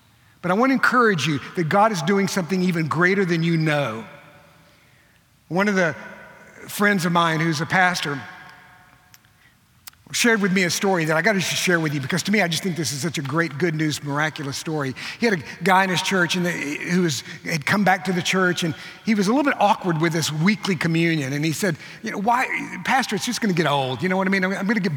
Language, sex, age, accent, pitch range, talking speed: English, male, 50-69, American, 155-195 Hz, 240 wpm